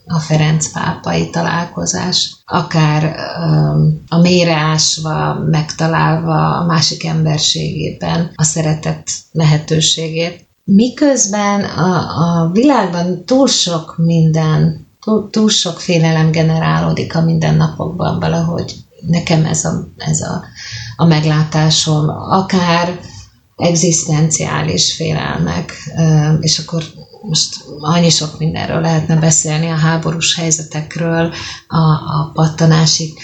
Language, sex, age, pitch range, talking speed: Hungarian, female, 30-49, 155-165 Hz, 95 wpm